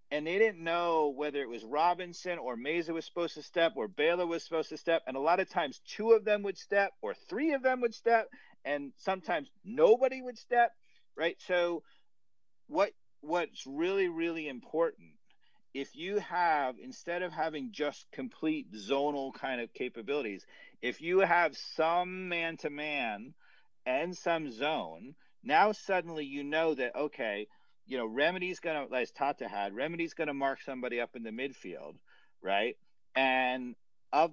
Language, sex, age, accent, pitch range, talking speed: English, male, 50-69, American, 140-195 Hz, 165 wpm